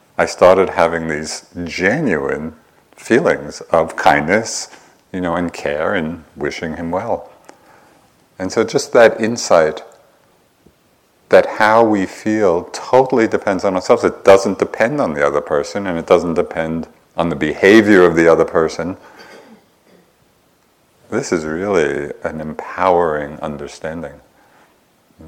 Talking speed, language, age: 130 wpm, English, 50-69